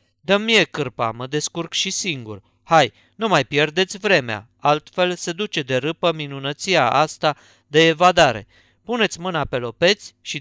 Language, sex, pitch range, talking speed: Romanian, male, 120-170 Hz, 150 wpm